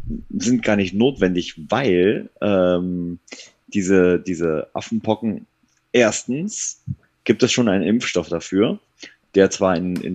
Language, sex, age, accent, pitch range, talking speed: German, male, 30-49, German, 90-110 Hz, 120 wpm